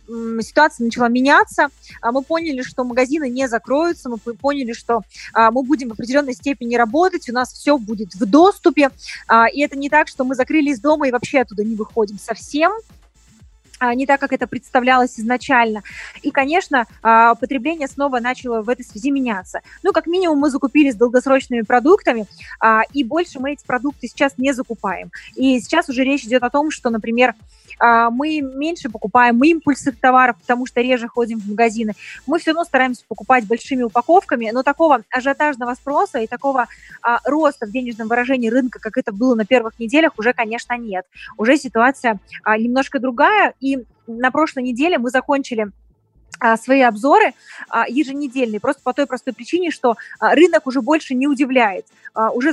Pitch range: 235-285 Hz